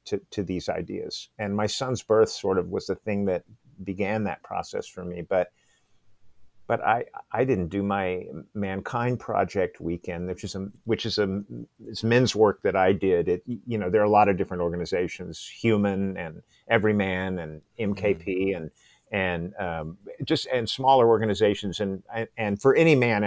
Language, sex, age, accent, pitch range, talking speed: English, male, 50-69, American, 95-110 Hz, 180 wpm